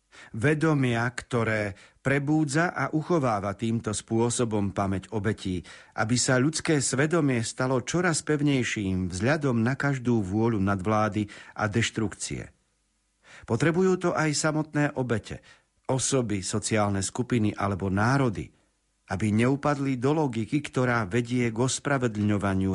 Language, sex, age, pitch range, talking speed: Slovak, male, 50-69, 105-140 Hz, 110 wpm